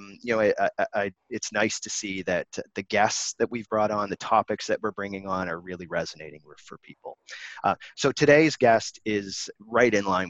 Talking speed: 215 wpm